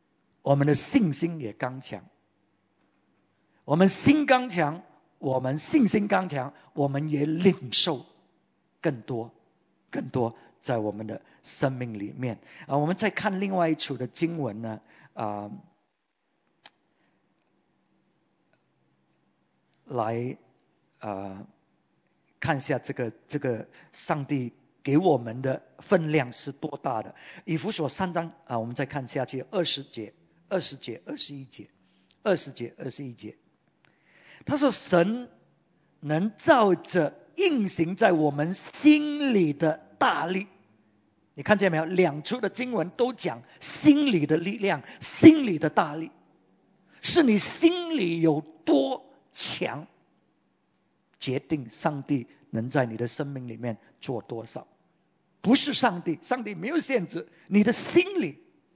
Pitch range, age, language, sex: 125-190 Hz, 50-69, English, male